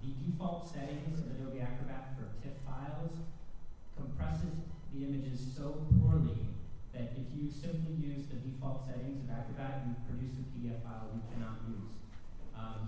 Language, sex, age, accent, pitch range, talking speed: English, male, 30-49, American, 120-140 Hz, 155 wpm